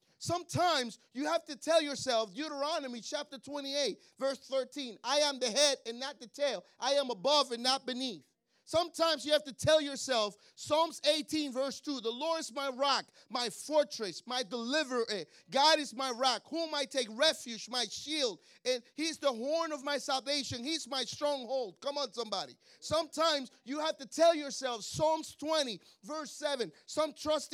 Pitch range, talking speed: 260-310 Hz, 170 wpm